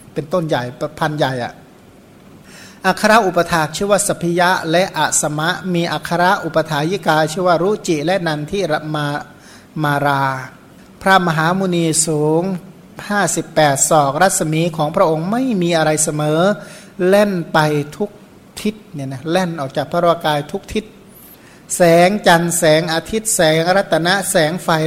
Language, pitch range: Thai, 155-190 Hz